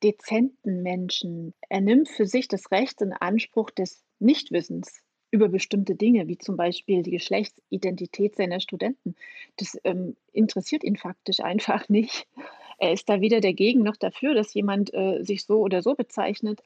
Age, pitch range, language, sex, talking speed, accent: 30-49, 190-235 Hz, German, female, 160 wpm, German